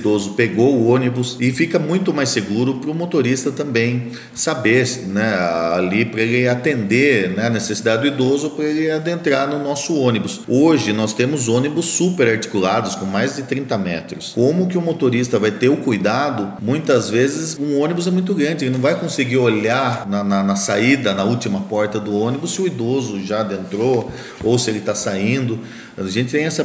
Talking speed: 190 wpm